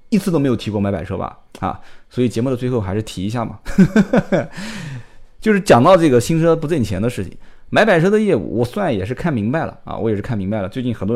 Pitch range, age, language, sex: 100-145 Hz, 20-39, Chinese, male